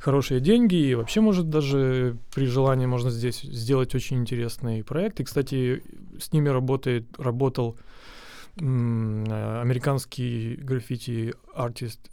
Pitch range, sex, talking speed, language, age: 120-145 Hz, male, 115 wpm, Ukrainian, 30-49